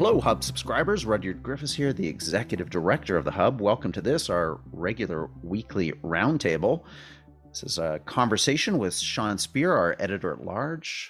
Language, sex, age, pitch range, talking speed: English, male, 40-59, 90-135 Hz, 150 wpm